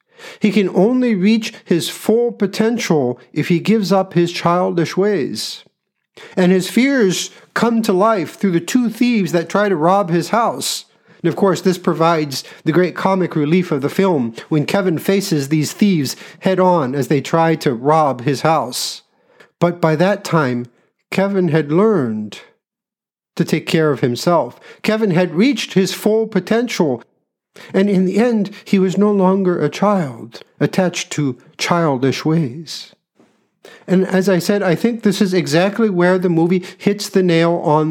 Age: 50-69